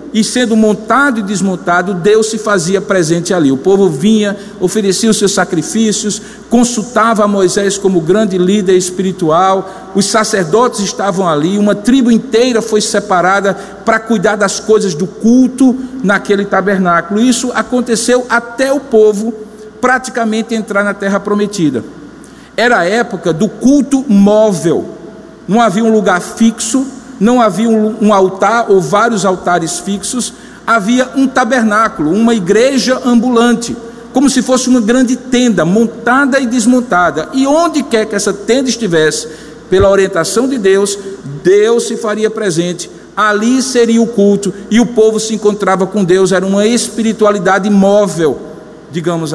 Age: 50-69